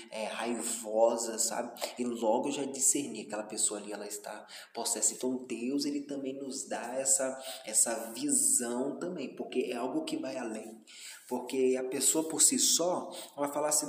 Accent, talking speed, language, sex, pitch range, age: Brazilian, 165 wpm, Portuguese, male, 115-135 Hz, 20-39